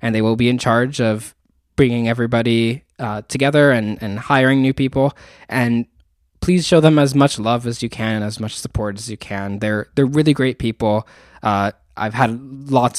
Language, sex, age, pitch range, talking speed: English, male, 10-29, 105-130 Hz, 195 wpm